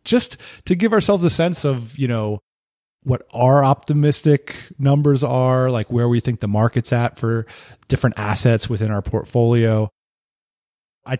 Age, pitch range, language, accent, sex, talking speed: 30-49, 110-145 Hz, English, American, male, 150 wpm